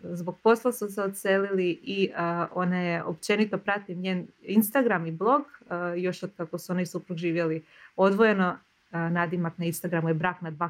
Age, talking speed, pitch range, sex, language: 20-39, 170 wpm, 170-210 Hz, female, Croatian